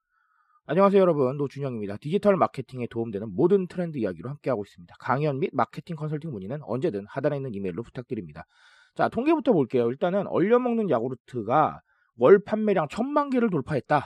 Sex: male